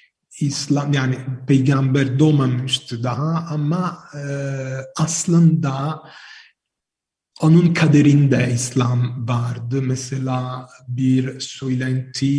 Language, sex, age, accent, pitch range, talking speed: Turkish, male, 40-59, Italian, 125-140 Hz, 75 wpm